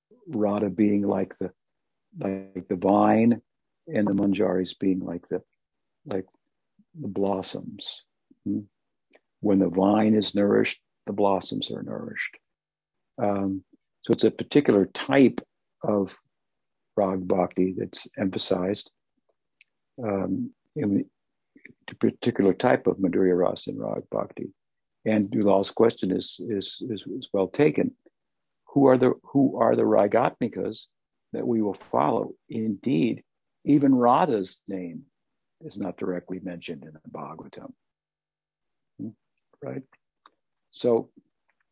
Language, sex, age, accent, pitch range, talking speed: English, male, 60-79, American, 95-115 Hz, 110 wpm